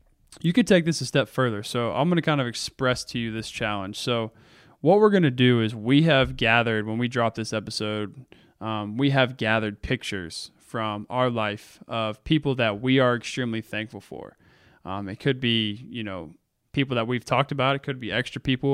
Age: 20-39